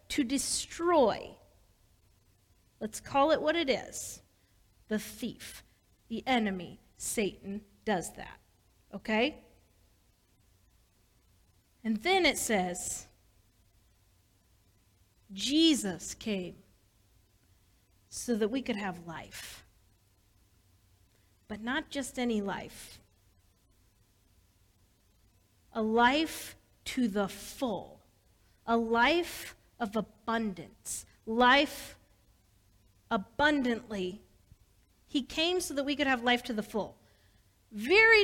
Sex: female